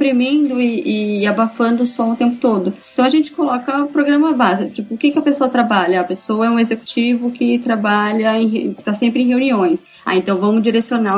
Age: 20-39